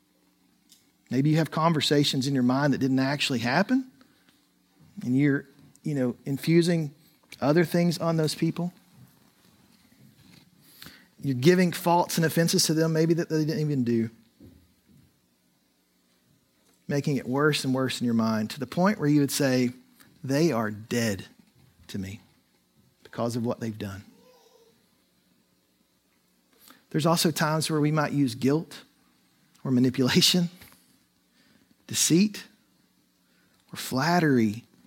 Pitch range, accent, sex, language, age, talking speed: 115-175 Hz, American, male, English, 40-59, 125 wpm